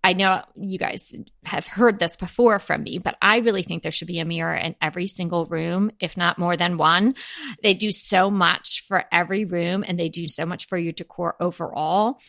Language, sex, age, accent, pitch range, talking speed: English, female, 30-49, American, 175-225 Hz, 215 wpm